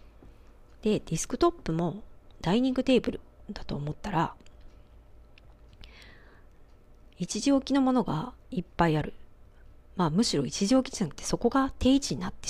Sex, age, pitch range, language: female, 40-59, 150-215 Hz, Japanese